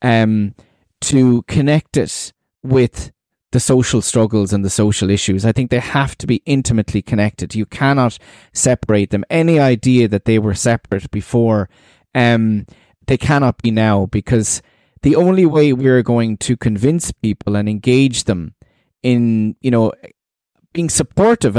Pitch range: 110-140 Hz